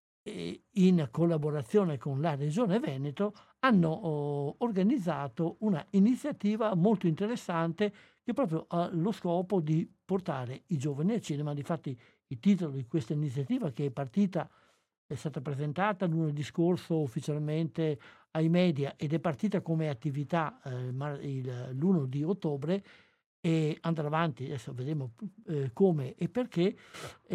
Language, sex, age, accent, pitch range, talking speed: Italian, male, 60-79, native, 145-195 Hz, 125 wpm